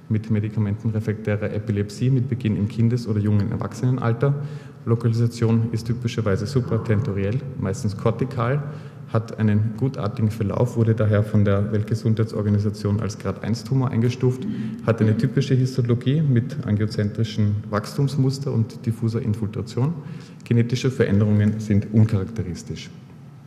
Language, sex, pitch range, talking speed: German, male, 105-120 Hz, 105 wpm